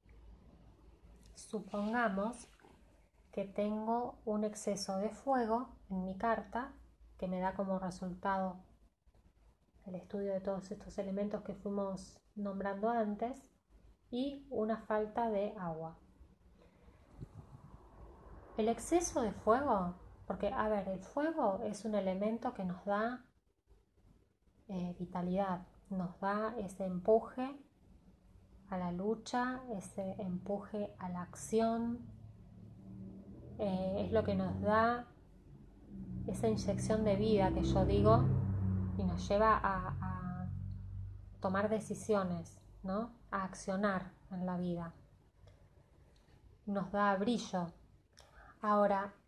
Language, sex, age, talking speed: Spanish, female, 20-39, 110 wpm